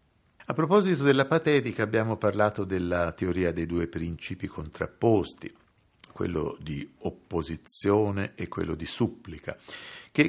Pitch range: 90-120 Hz